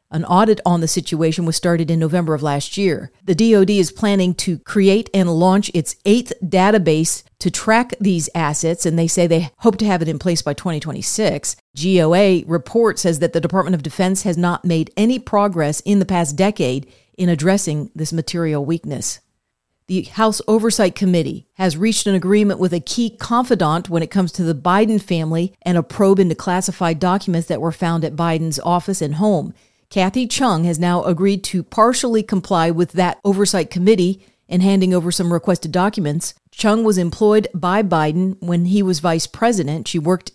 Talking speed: 185 wpm